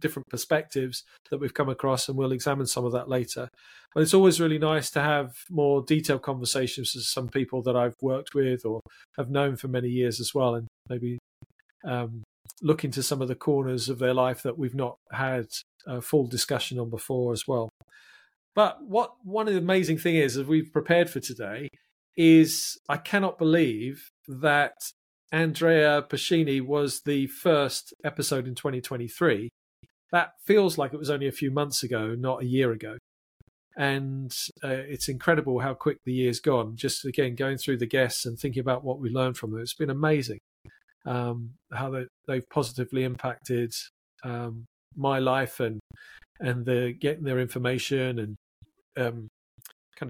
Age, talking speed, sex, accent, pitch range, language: 40-59, 170 wpm, male, British, 125-150 Hz, English